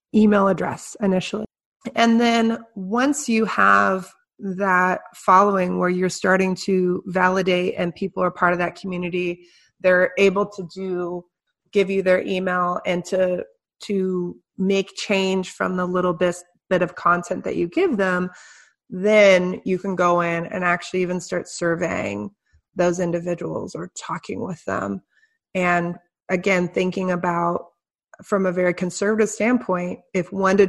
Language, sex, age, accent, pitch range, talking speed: English, female, 30-49, American, 175-195 Hz, 145 wpm